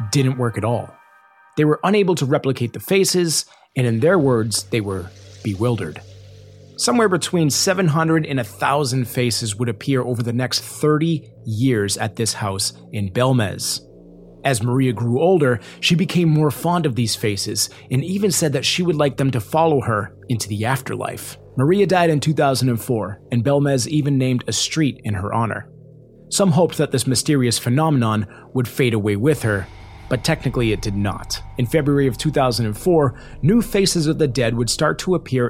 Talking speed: 175 wpm